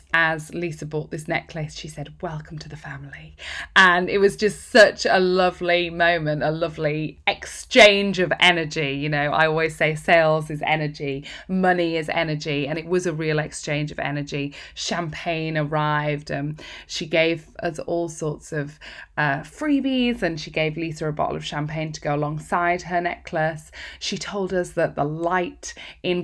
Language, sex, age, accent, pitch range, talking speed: English, female, 20-39, British, 155-180 Hz, 170 wpm